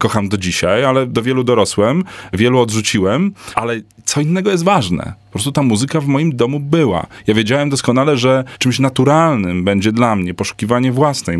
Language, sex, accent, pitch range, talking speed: Polish, male, native, 100-130 Hz, 175 wpm